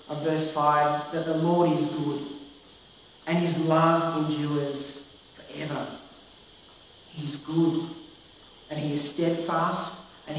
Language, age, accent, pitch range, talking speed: English, 40-59, Australian, 150-170 Hz, 115 wpm